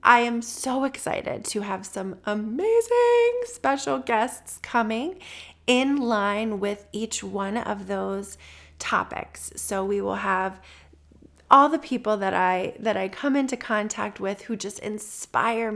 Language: English